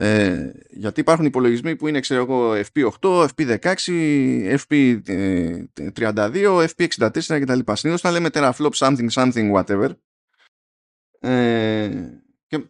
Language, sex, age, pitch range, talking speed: Greek, male, 20-39, 110-160 Hz, 90 wpm